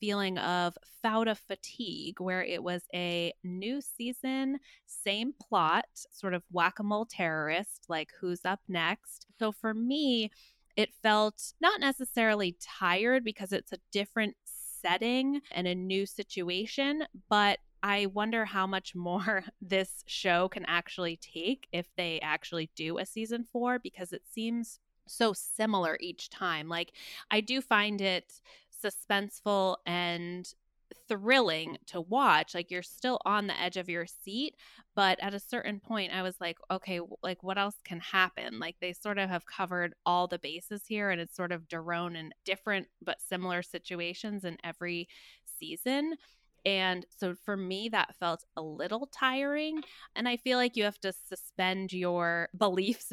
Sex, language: female, English